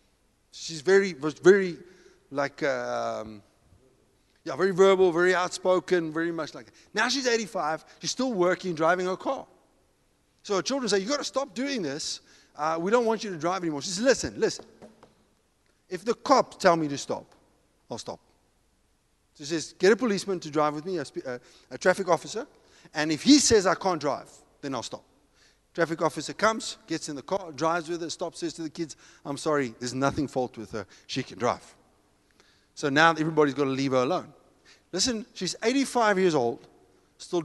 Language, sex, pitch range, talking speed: English, male, 150-200 Hz, 185 wpm